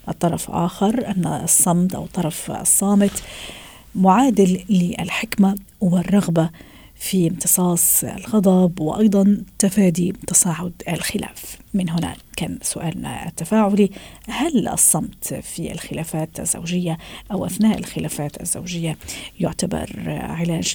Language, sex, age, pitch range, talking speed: Arabic, female, 40-59, 180-215 Hz, 95 wpm